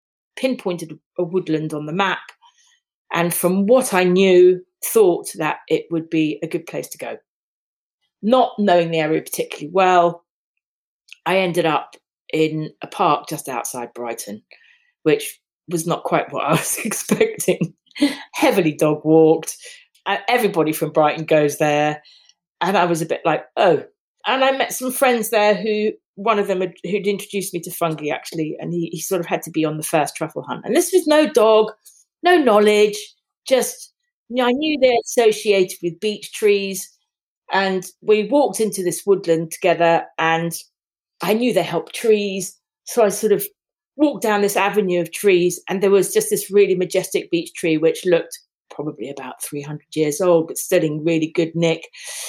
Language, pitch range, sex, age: English, 165-230 Hz, female, 40-59